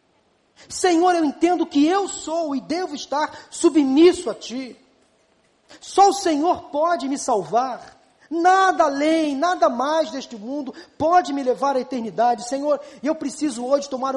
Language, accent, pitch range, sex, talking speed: Portuguese, Brazilian, 180-275 Hz, male, 150 wpm